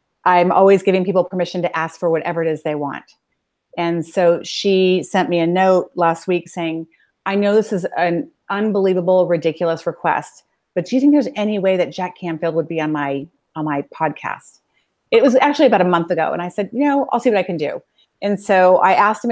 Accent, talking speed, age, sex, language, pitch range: American, 220 wpm, 30-49, female, English, 170-225 Hz